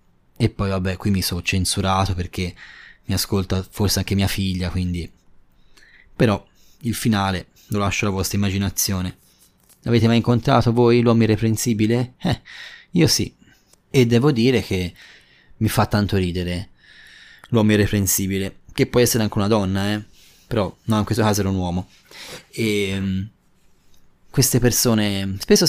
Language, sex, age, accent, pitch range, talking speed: Italian, male, 20-39, native, 95-115 Hz, 140 wpm